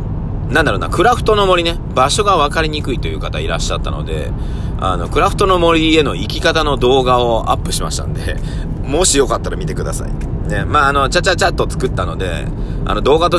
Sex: male